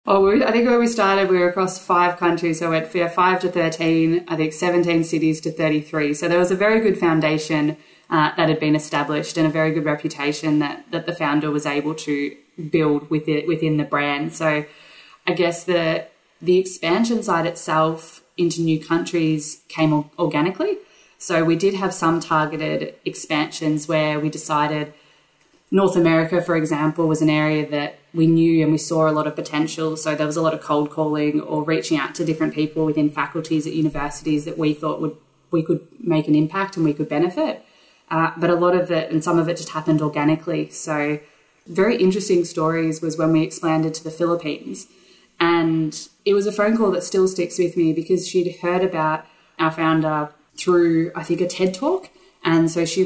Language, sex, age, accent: English, female, 20-39, Australian